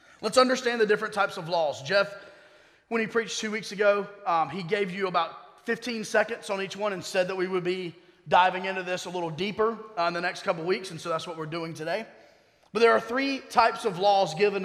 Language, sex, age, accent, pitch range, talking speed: English, male, 30-49, American, 180-220 Hz, 235 wpm